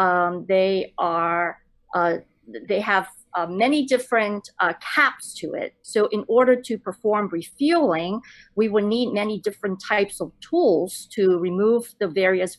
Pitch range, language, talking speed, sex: 180-230 Hz, English, 145 wpm, female